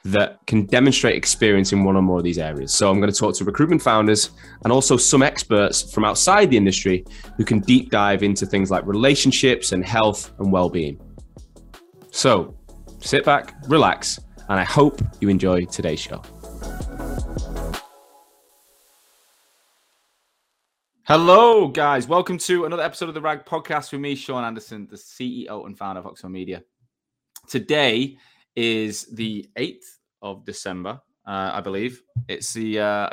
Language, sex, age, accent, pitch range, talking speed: English, male, 20-39, British, 100-130 Hz, 150 wpm